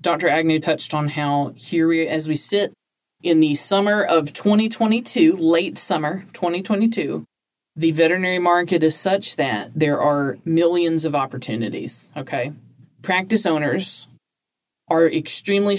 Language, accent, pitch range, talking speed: English, American, 140-160 Hz, 125 wpm